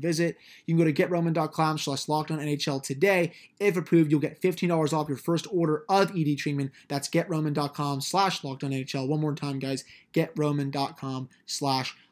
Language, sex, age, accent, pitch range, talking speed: English, male, 20-39, American, 140-165 Hz, 175 wpm